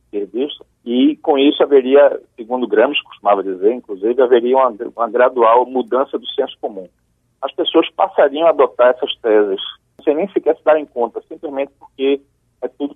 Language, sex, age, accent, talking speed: Portuguese, male, 50-69, Brazilian, 160 wpm